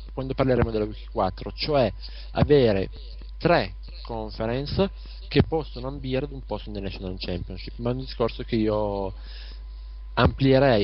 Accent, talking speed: native, 135 wpm